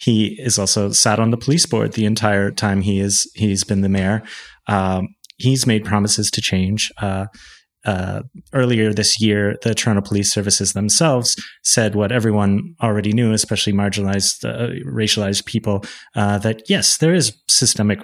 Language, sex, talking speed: English, male, 165 wpm